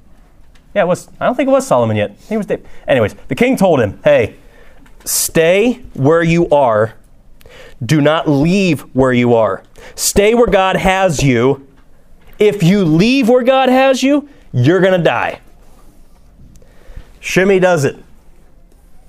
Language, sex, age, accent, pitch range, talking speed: English, male, 30-49, American, 135-195 Hz, 150 wpm